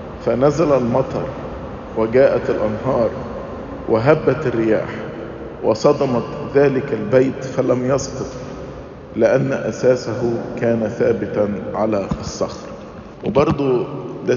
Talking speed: 75 wpm